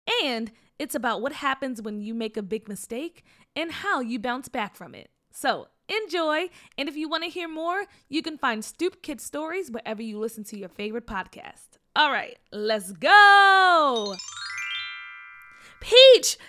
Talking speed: 165 wpm